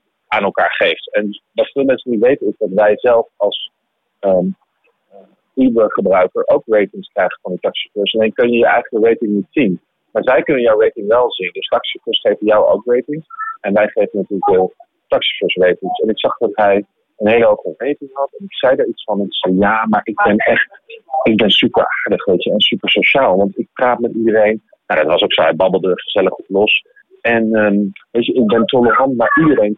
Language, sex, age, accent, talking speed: Dutch, male, 40-59, Dutch, 225 wpm